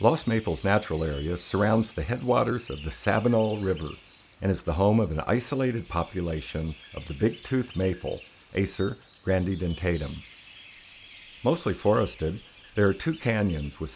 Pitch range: 80-105 Hz